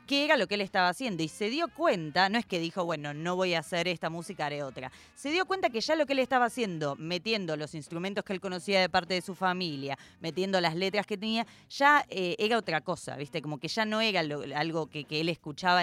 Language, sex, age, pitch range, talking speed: Spanish, female, 20-39, 160-205 Hz, 250 wpm